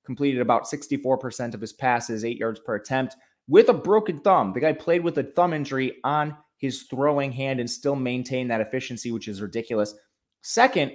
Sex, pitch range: male, 110-140 Hz